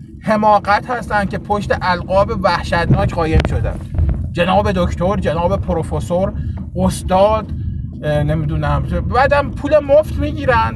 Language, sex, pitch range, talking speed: Persian, male, 165-260 Hz, 100 wpm